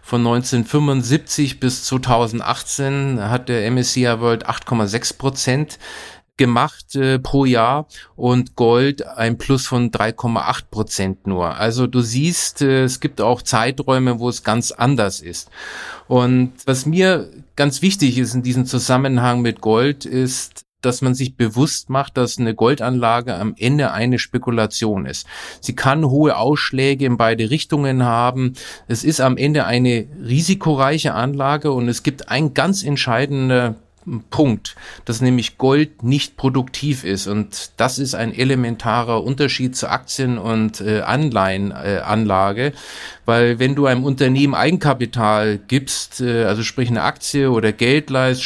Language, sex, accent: German, male, German